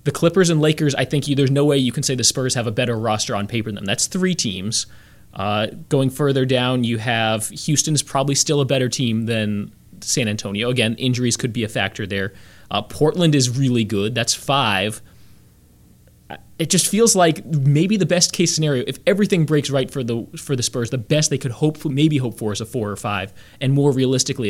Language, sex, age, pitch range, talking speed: English, male, 20-39, 110-140 Hz, 220 wpm